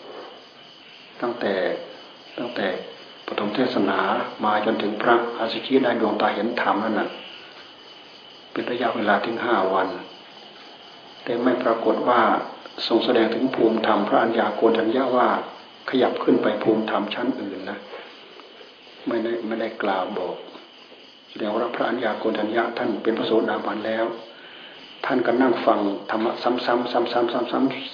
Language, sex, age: Thai, male, 60-79